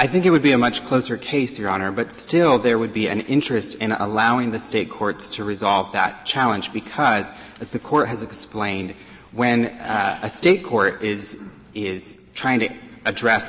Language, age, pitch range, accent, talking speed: English, 30-49, 100-120 Hz, American, 190 wpm